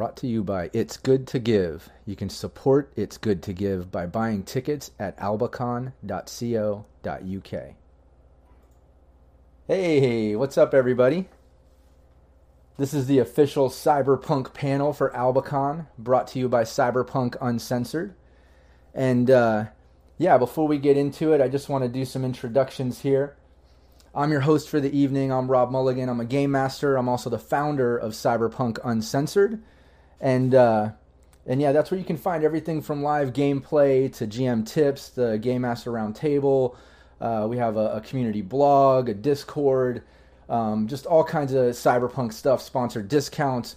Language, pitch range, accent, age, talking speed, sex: English, 110-140 Hz, American, 30-49, 155 wpm, male